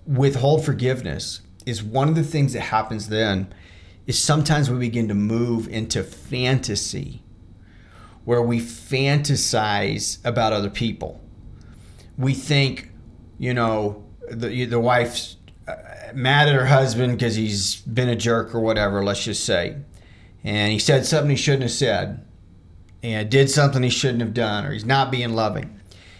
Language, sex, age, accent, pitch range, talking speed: English, male, 40-59, American, 100-135 Hz, 150 wpm